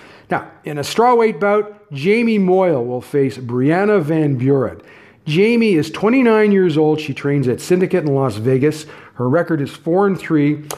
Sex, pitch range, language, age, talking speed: male, 130-195 Hz, English, 40-59, 165 wpm